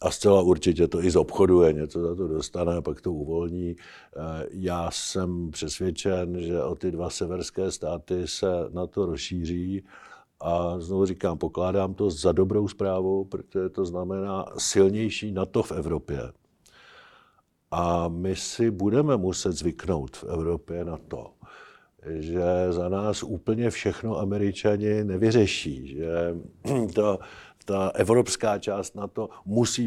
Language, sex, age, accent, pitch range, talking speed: Czech, male, 50-69, native, 85-100 Hz, 135 wpm